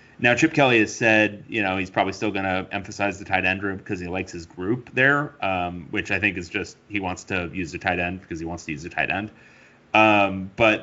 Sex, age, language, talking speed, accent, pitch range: male, 30-49, English, 255 wpm, American, 95-120 Hz